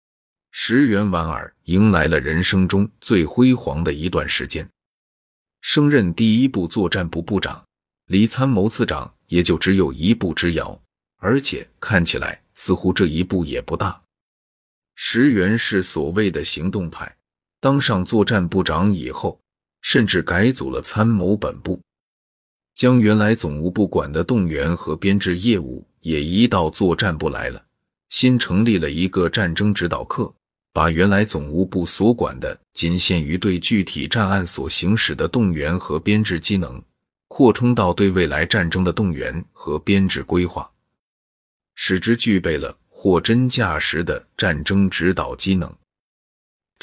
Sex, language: male, Chinese